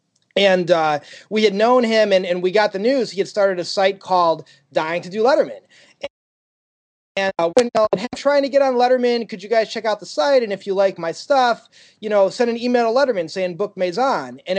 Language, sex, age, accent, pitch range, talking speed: English, male, 30-49, American, 180-230 Hz, 225 wpm